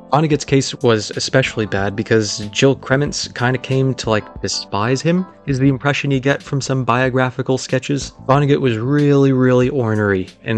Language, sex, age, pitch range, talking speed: English, male, 20-39, 110-135 Hz, 170 wpm